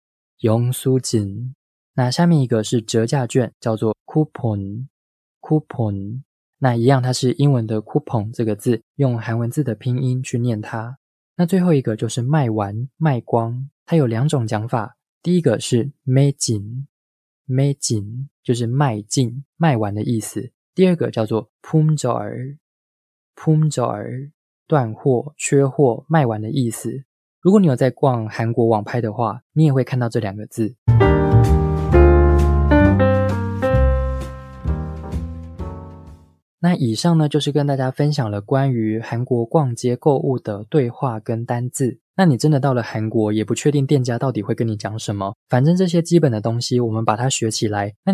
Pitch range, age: 110-140 Hz, 20-39